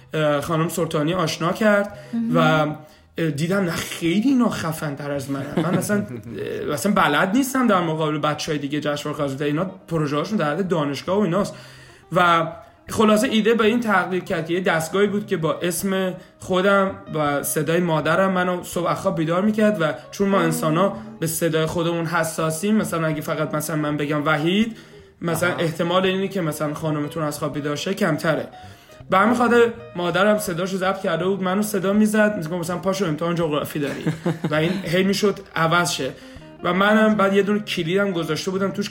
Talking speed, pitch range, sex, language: 160 wpm, 155-200 Hz, male, Persian